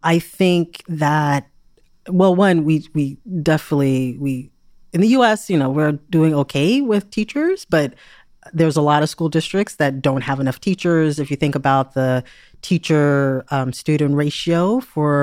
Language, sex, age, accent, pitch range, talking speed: English, female, 30-49, American, 140-185 Hz, 165 wpm